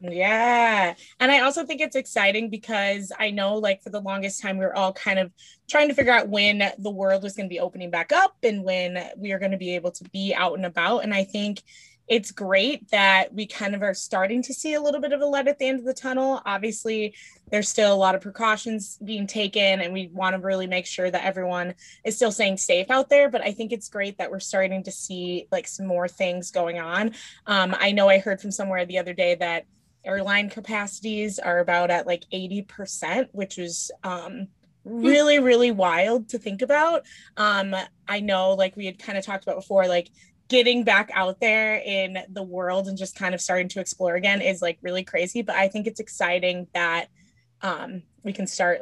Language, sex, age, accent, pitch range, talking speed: English, female, 20-39, American, 180-220 Hz, 220 wpm